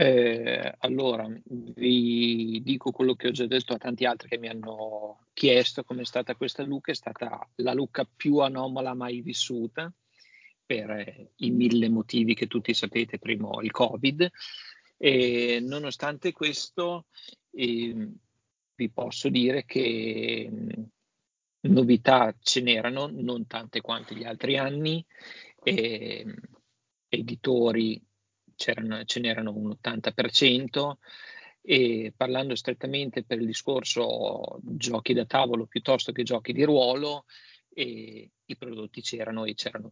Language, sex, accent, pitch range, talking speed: Italian, male, native, 115-130 Hz, 125 wpm